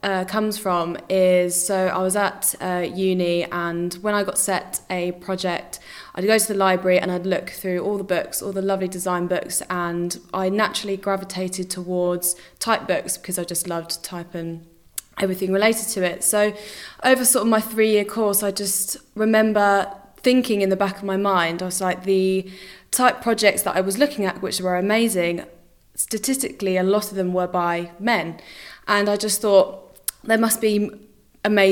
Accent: British